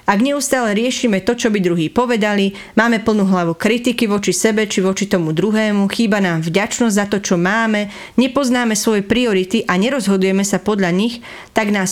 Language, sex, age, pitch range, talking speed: English, female, 30-49, 190-230 Hz, 175 wpm